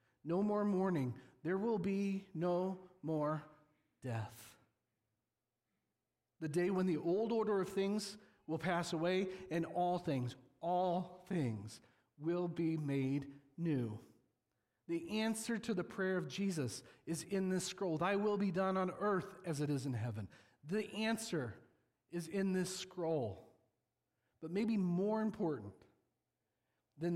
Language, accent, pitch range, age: English, American, 145-200 Hz, 40-59